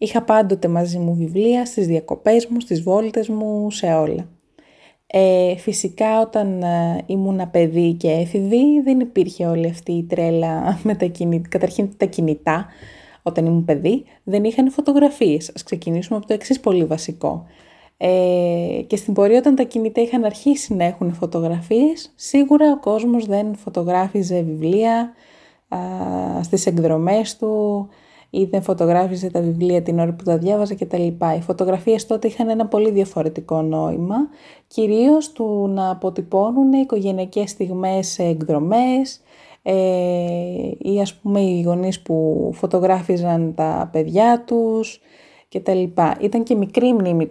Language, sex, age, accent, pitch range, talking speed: Greek, female, 20-39, native, 170-225 Hz, 140 wpm